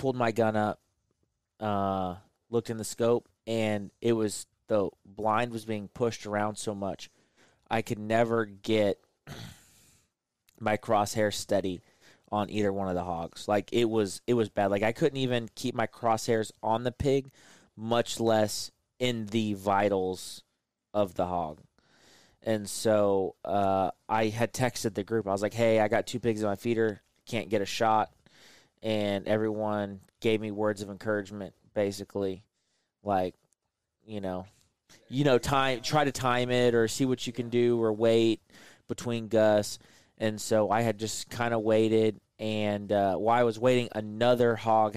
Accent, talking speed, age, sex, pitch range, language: American, 165 wpm, 20-39, male, 105-115 Hz, English